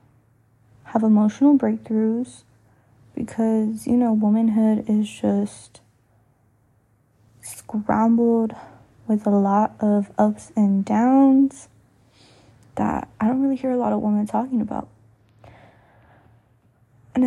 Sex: female